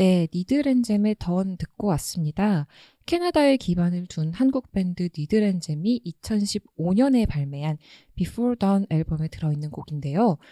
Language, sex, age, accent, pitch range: Korean, female, 20-39, native, 155-215 Hz